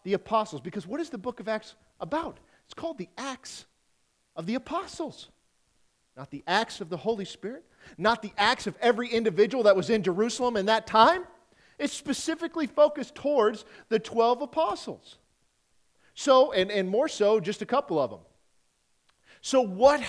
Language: English